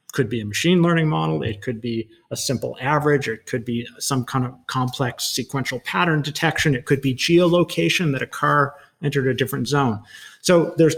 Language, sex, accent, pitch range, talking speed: English, male, American, 130-170 Hz, 195 wpm